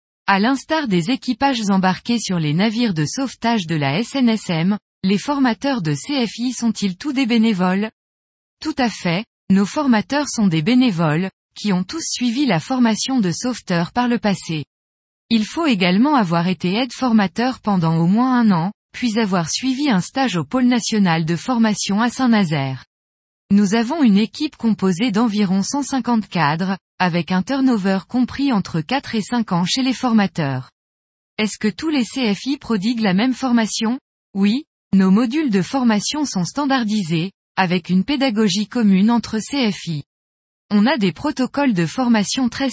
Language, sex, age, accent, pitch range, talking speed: French, female, 20-39, French, 185-250 Hz, 155 wpm